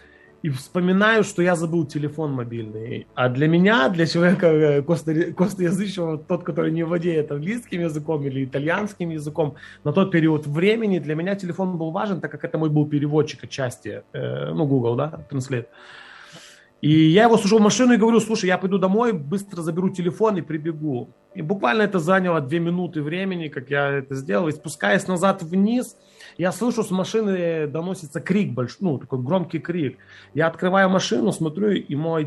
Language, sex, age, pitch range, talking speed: Ukrainian, male, 30-49, 145-190 Hz, 170 wpm